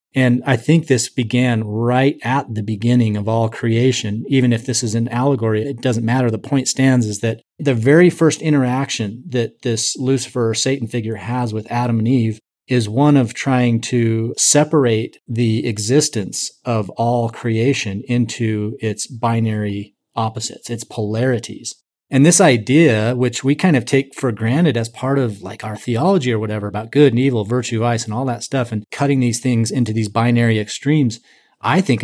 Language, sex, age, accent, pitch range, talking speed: English, male, 30-49, American, 110-130 Hz, 180 wpm